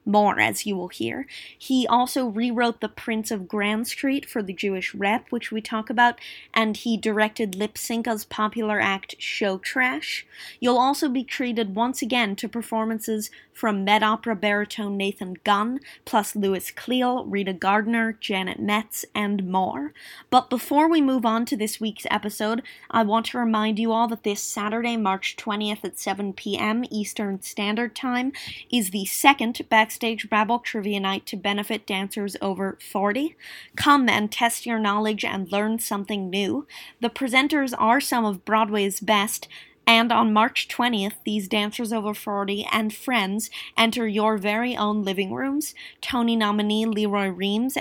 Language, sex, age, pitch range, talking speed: English, female, 20-39, 205-235 Hz, 160 wpm